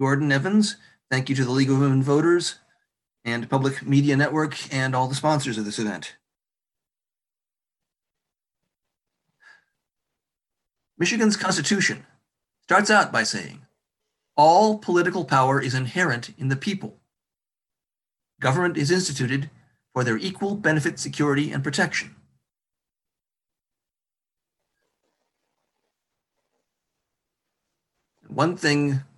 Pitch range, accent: 125-170 Hz, American